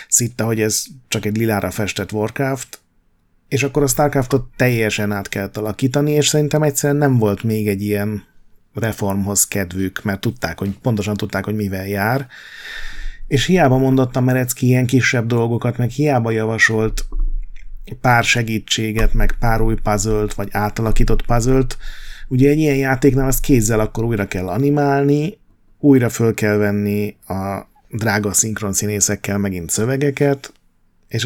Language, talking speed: Hungarian, 140 wpm